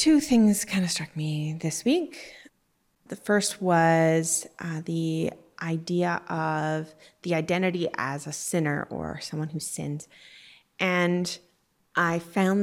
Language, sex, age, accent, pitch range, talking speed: English, female, 20-39, American, 170-205 Hz, 130 wpm